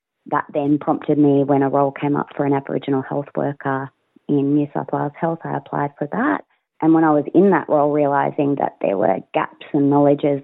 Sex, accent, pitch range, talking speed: female, Australian, 140-160 Hz, 215 wpm